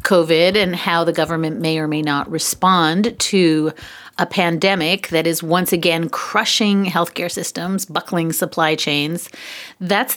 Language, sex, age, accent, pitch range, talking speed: English, female, 40-59, American, 175-235 Hz, 140 wpm